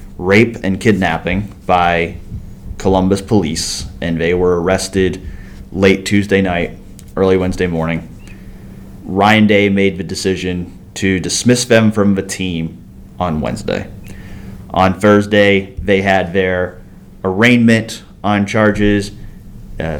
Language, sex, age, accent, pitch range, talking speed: English, male, 30-49, American, 90-105 Hz, 115 wpm